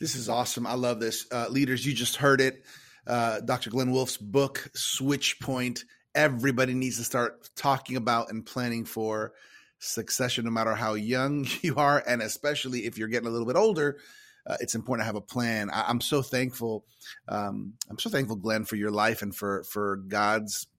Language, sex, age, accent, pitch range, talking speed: English, male, 30-49, American, 110-135 Hz, 195 wpm